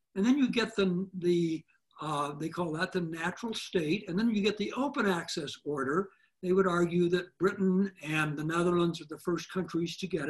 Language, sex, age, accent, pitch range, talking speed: English, male, 60-79, American, 170-220 Hz, 205 wpm